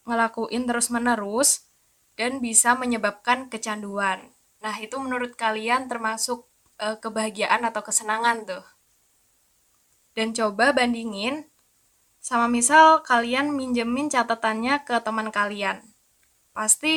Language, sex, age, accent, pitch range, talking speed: Indonesian, female, 10-29, native, 220-255 Hz, 100 wpm